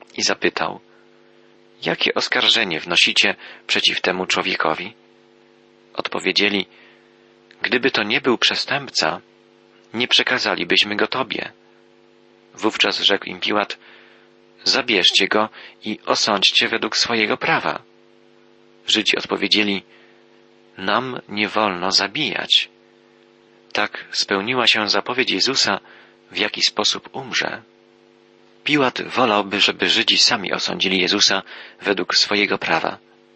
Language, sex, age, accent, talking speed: Polish, male, 40-59, native, 95 wpm